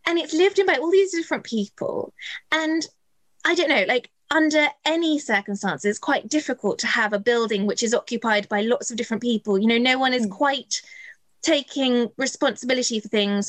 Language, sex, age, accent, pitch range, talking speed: English, female, 20-39, British, 225-330 Hz, 185 wpm